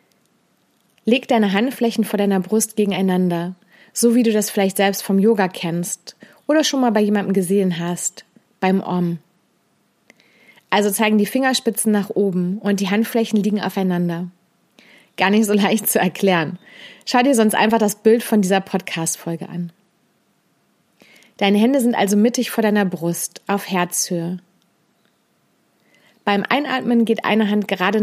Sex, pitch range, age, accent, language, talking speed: female, 185-225 Hz, 30-49, German, German, 145 wpm